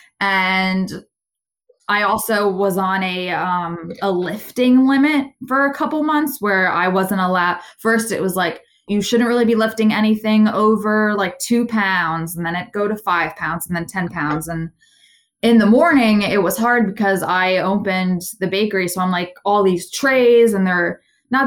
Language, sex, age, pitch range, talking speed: English, female, 20-39, 185-220 Hz, 180 wpm